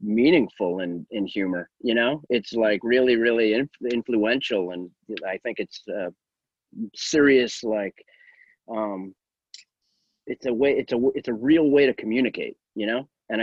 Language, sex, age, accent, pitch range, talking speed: English, male, 30-49, American, 100-125 Hz, 145 wpm